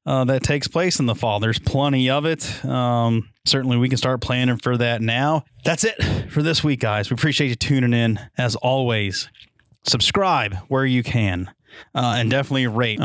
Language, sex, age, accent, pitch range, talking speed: English, male, 30-49, American, 120-145 Hz, 190 wpm